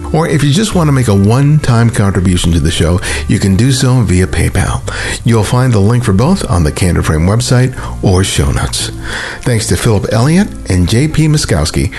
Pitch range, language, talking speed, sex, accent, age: 95-125 Hz, English, 200 wpm, male, American, 60-79